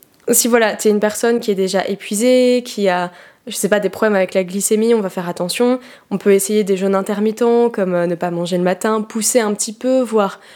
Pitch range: 195-235 Hz